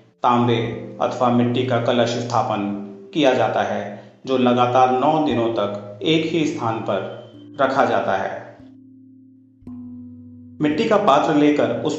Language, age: Hindi, 40-59